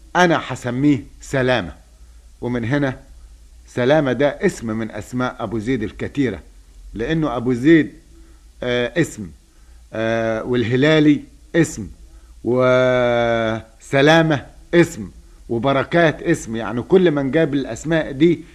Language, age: Arabic, 50-69